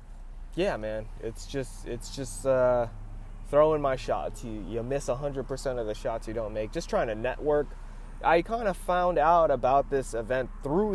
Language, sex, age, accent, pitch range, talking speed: English, male, 20-39, American, 105-140 Hz, 185 wpm